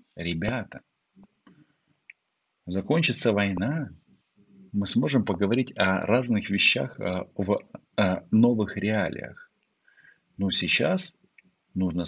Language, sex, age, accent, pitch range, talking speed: Russian, male, 50-69, native, 95-140 Hz, 75 wpm